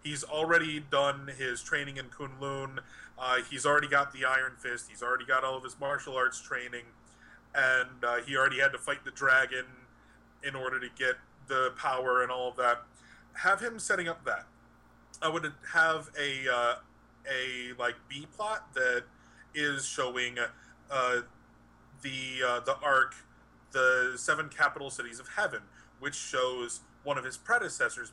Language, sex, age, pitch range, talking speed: English, male, 30-49, 125-145 Hz, 160 wpm